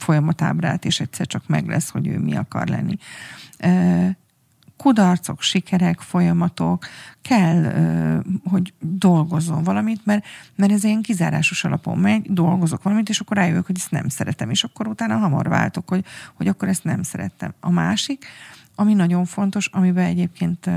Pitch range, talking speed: 165-190 Hz, 155 wpm